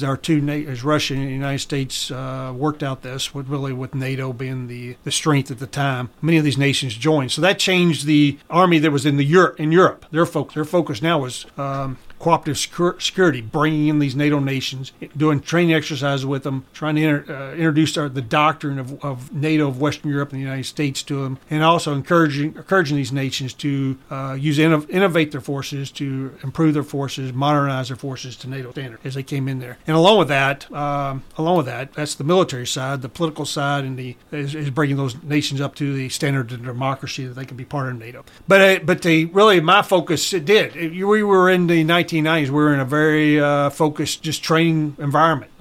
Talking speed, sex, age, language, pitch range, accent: 220 wpm, male, 40-59, English, 135-155 Hz, American